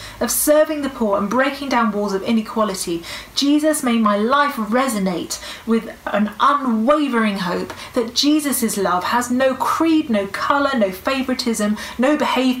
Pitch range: 175-240 Hz